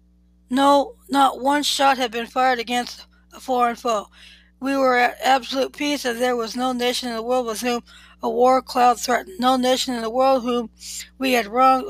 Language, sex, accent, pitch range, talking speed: English, female, American, 235-265 Hz, 195 wpm